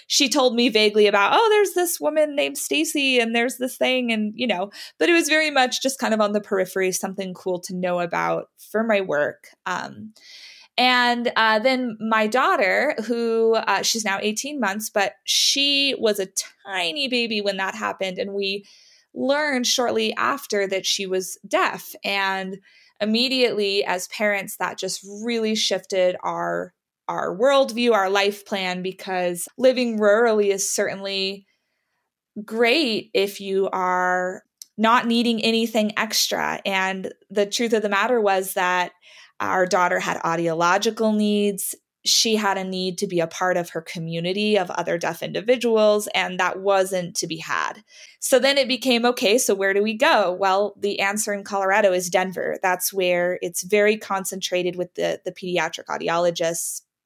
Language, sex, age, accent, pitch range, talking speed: English, female, 20-39, American, 190-235 Hz, 165 wpm